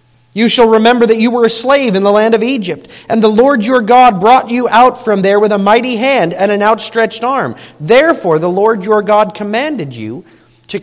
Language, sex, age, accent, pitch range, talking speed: English, male, 40-59, American, 135-215 Hz, 215 wpm